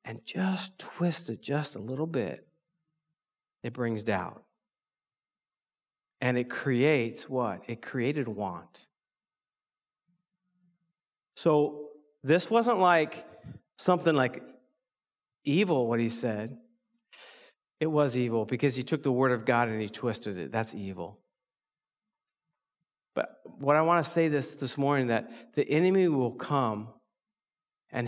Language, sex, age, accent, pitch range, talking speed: English, male, 50-69, American, 120-170 Hz, 125 wpm